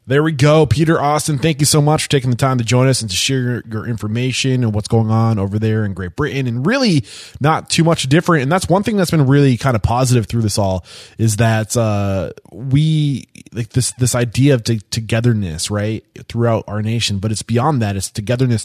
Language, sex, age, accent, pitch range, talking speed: English, male, 20-39, American, 110-135 Hz, 220 wpm